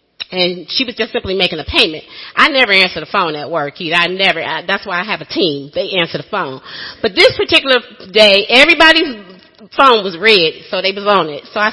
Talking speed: 220 wpm